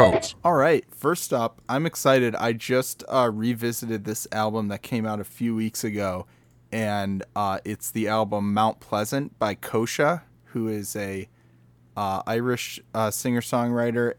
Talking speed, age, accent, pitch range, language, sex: 150 wpm, 20-39, American, 100-120 Hz, English, male